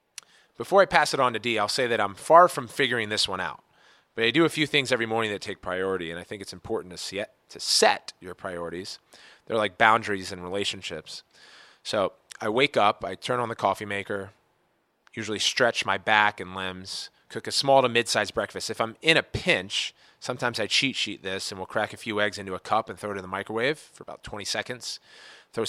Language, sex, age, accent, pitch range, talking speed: English, male, 30-49, American, 100-120 Hz, 220 wpm